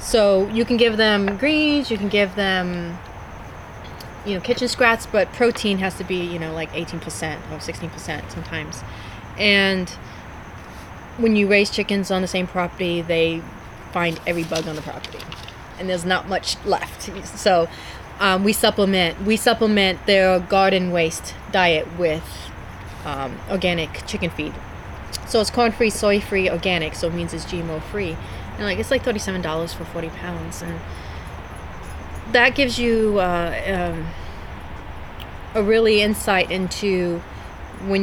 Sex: female